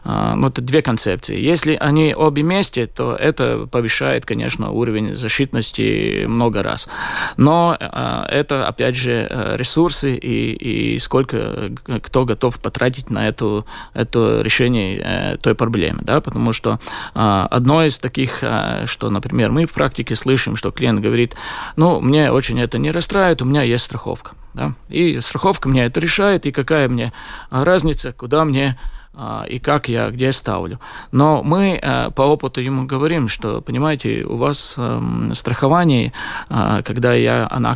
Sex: male